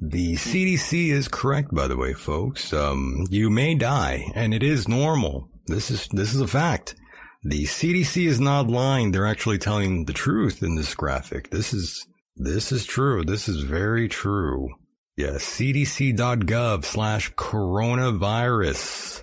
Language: English